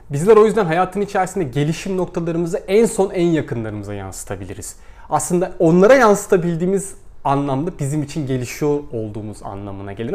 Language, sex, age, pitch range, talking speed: Turkish, male, 30-49, 130-195 Hz, 130 wpm